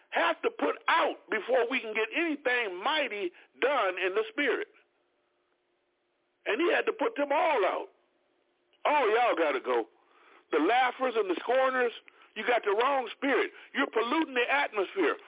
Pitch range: 280-390 Hz